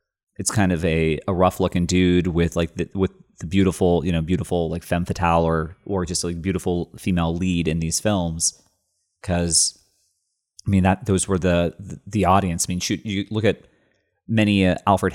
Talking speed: 190 wpm